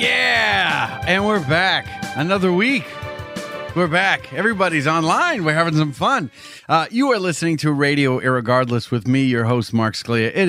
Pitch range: 125-165 Hz